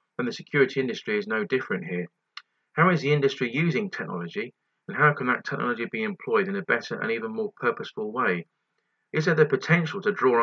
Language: English